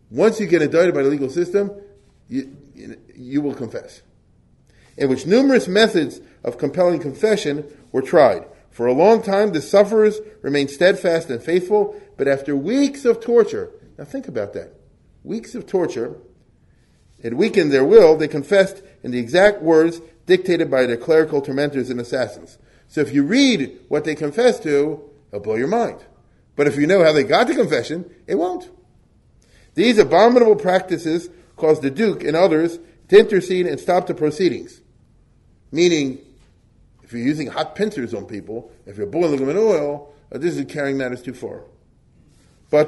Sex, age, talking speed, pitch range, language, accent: male, 40-59, 165 wpm, 145-215 Hz, English, American